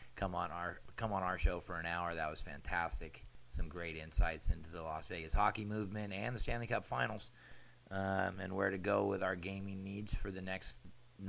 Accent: American